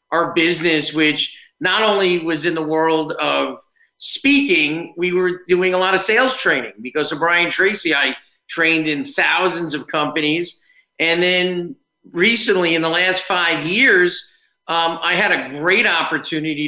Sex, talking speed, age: male, 155 wpm, 40-59